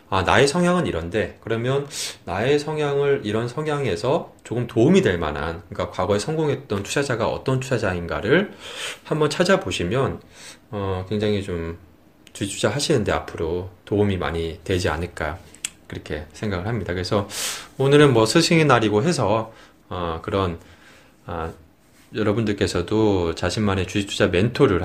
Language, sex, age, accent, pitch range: Korean, male, 20-39, native, 90-120 Hz